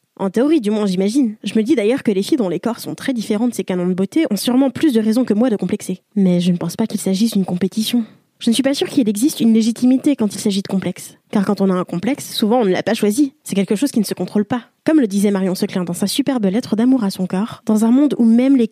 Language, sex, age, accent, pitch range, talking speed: French, female, 20-39, French, 200-255 Hz, 300 wpm